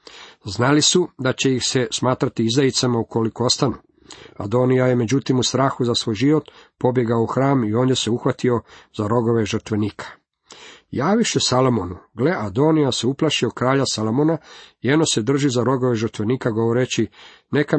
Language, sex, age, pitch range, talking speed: Croatian, male, 50-69, 115-140 Hz, 150 wpm